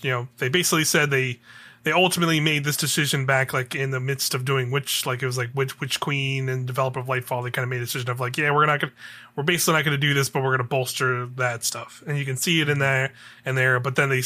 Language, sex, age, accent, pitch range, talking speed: English, male, 30-49, American, 125-145 Hz, 280 wpm